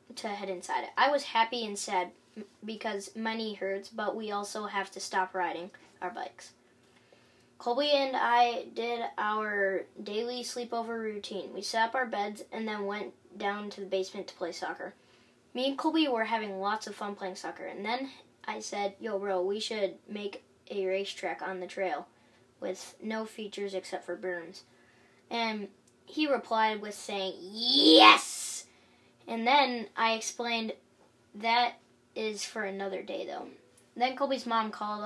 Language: English